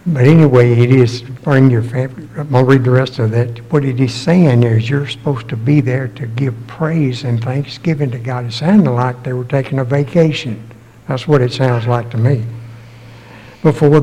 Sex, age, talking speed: male, 60-79, 205 wpm